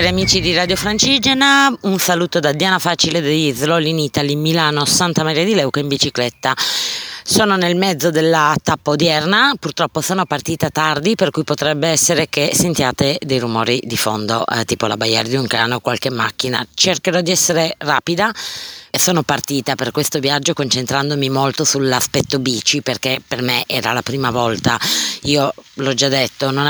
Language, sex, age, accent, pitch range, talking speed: Italian, female, 20-39, native, 130-165 Hz, 170 wpm